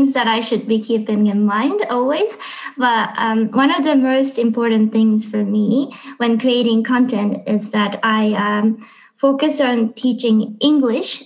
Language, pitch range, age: Japanese, 215-260 Hz, 20-39